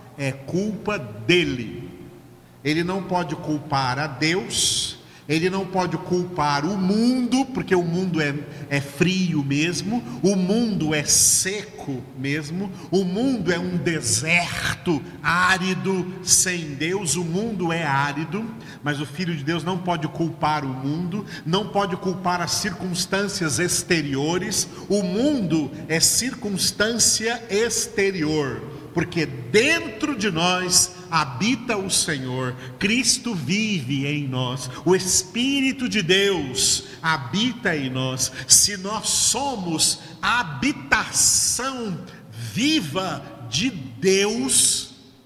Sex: male